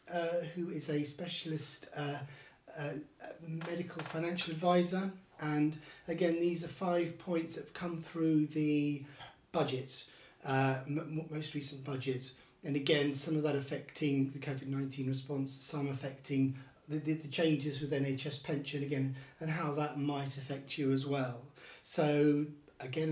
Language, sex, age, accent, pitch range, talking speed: English, male, 40-59, British, 140-165 Hz, 145 wpm